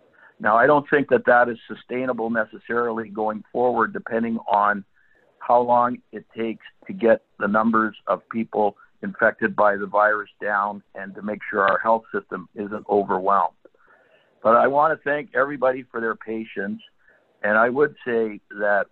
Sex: male